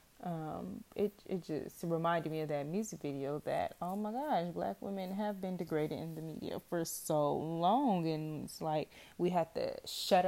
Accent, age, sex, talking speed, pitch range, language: American, 20-39, female, 185 wpm, 160-190 Hz, English